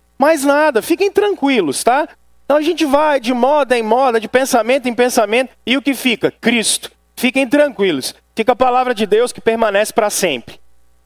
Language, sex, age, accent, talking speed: Portuguese, male, 40-59, Brazilian, 180 wpm